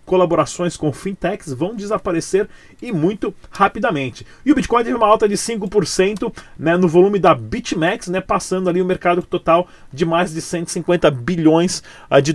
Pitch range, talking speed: 160-200 Hz, 160 wpm